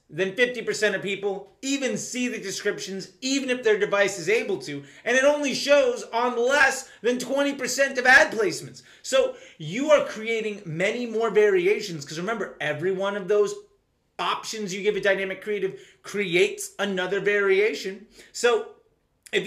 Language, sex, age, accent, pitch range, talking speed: English, male, 30-49, American, 180-245 Hz, 155 wpm